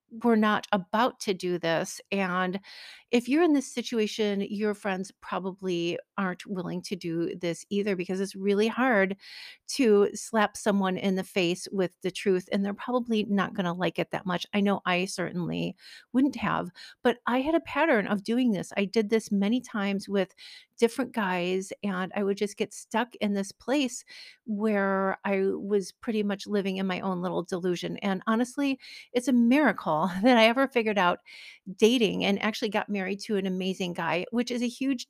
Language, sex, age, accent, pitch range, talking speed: English, female, 40-59, American, 195-240 Hz, 185 wpm